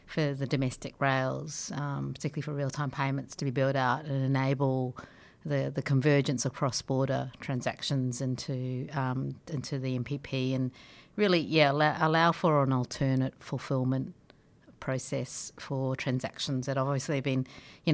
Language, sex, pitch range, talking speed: English, female, 130-145 Hz, 145 wpm